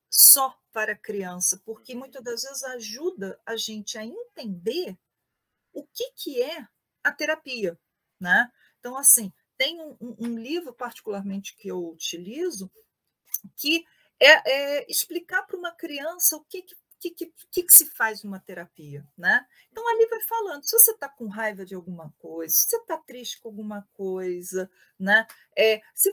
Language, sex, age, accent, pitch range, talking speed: Portuguese, female, 40-59, Brazilian, 215-335 Hz, 160 wpm